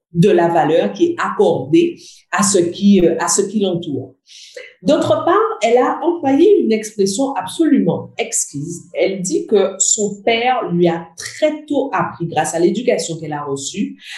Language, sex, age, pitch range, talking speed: French, female, 50-69, 165-270 Hz, 150 wpm